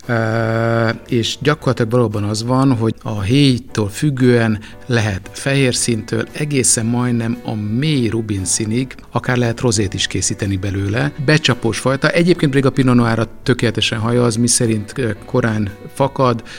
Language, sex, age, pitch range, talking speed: Hungarian, male, 50-69, 110-130 Hz, 135 wpm